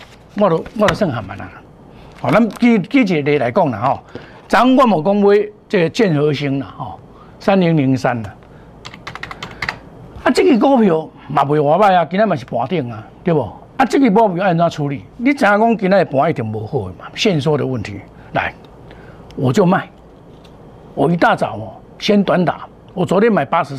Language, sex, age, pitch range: Chinese, male, 60-79, 145-225 Hz